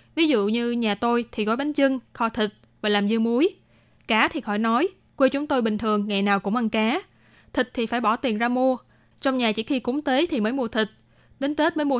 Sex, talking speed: female, 250 wpm